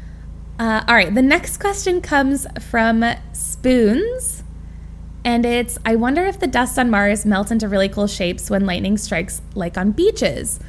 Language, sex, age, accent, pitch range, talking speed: English, female, 20-39, American, 175-255 Hz, 165 wpm